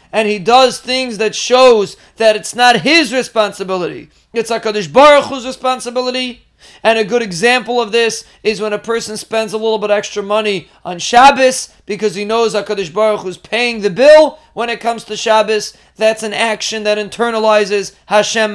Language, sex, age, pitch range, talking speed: English, male, 30-49, 215-250 Hz, 170 wpm